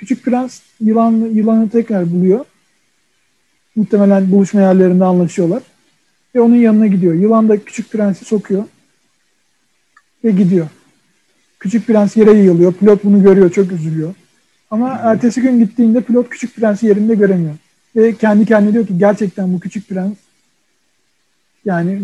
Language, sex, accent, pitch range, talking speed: Turkish, male, native, 185-225 Hz, 135 wpm